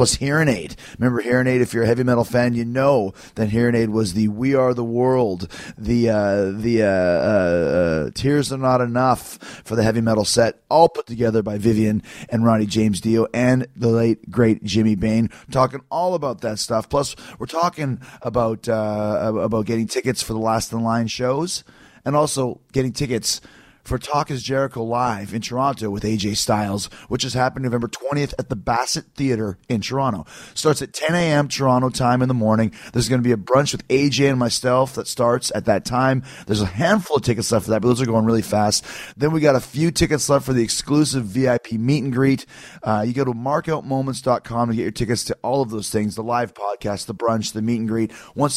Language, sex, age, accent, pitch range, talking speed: English, male, 30-49, American, 110-130 Hz, 210 wpm